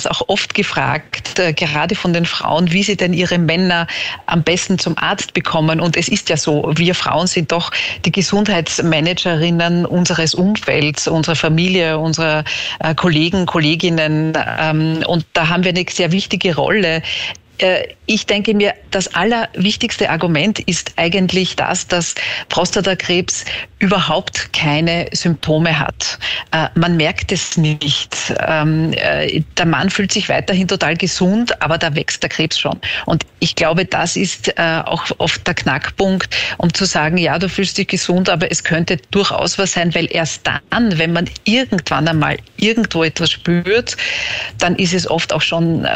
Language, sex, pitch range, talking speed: German, female, 160-185 Hz, 150 wpm